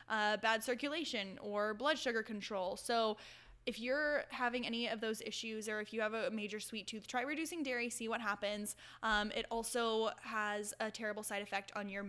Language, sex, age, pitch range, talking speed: English, female, 10-29, 205-245 Hz, 195 wpm